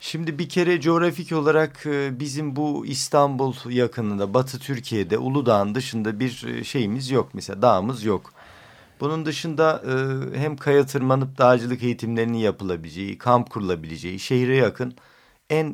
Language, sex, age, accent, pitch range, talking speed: Turkish, male, 50-69, native, 105-150 Hz, 120 wpm